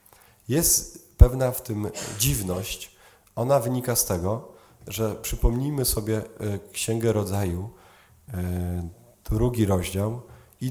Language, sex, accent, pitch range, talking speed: Polish, male, native, 100-130 Hz, 95 wpm